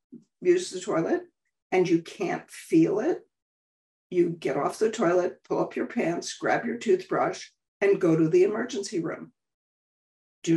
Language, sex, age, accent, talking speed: English, female, 60-79, American, 155 wpm